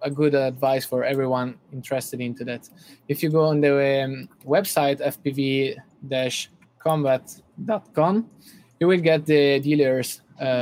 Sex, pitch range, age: male, 125-155 Hz, 20-39